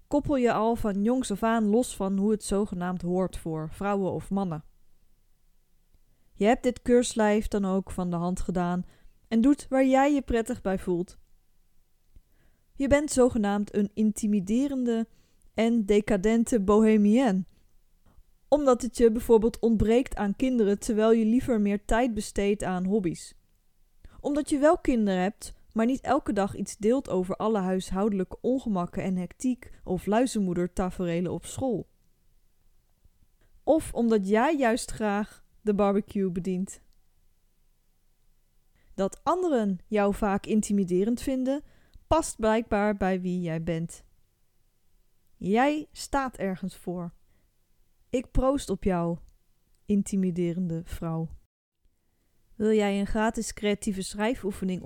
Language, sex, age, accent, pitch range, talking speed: Dutch, female, 20-39, Dutch, 180-230 Hz, 125 wpm